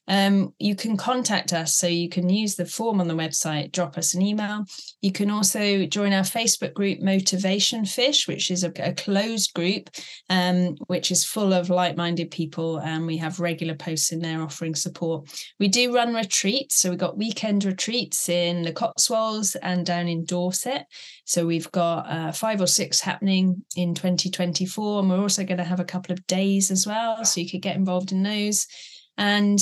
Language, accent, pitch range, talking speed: English, British, 170-210 Hz, 195 wpm